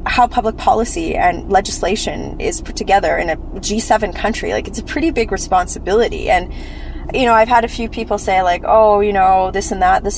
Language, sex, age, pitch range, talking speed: English, female, 20-39, 185-225 Hz, 205 wpm